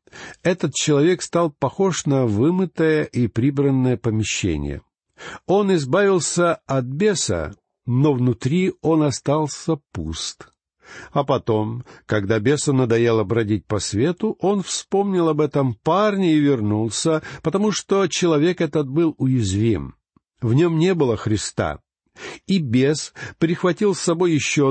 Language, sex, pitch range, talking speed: Russian, male, 110-160 Hz, 120 wpm